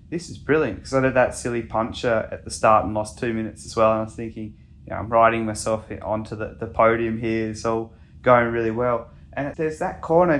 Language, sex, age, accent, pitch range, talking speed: English, male, 20-39, Australian, 115-130 Hz, 235 wpm